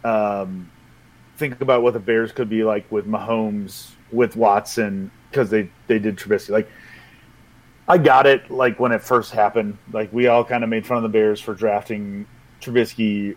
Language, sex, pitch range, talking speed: English, male, 110-135 Hz, 180 wpm